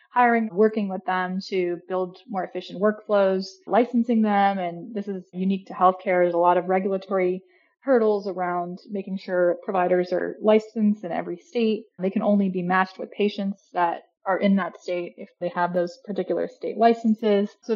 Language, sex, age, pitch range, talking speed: English, female, 20-39, 180-215 Hz, 175 wpm